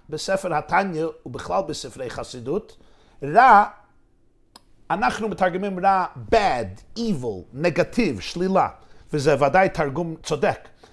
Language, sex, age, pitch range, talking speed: Hebrew, male, 50-69, 160-210 Hz, 95 wpm